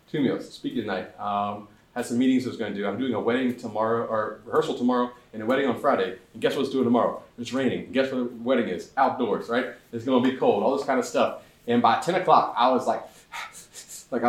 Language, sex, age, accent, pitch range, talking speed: English, male, 30-49, American, 100-130 Hz, 240 wpm